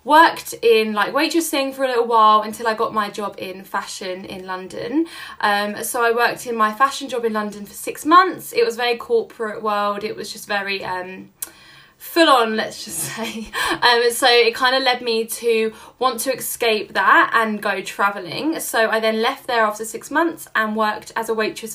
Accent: British